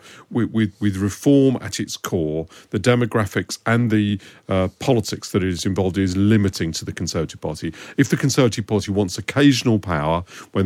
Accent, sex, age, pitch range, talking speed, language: British, male, 50-69, 95-115 Hz, 175 wpm, English